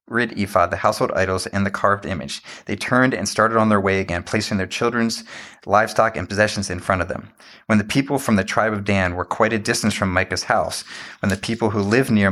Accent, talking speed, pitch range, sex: American, 235 wpm, 95-110 Hz, male